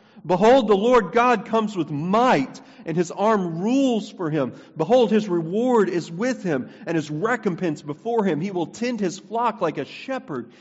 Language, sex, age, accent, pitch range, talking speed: English, male, 40-59, American, 125-180 Hz, 180 wpm